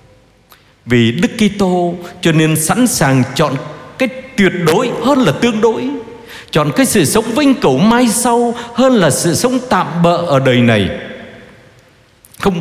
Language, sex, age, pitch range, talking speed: Vietnamese, male, 60-79, 135-205 Hz, 155 wpm